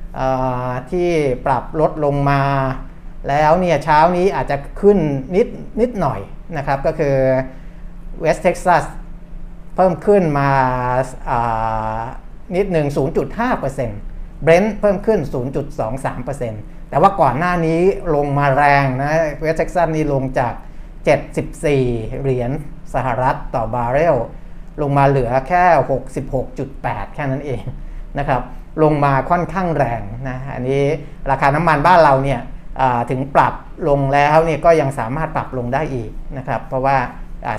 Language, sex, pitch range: Thai, male, 135-165 Hz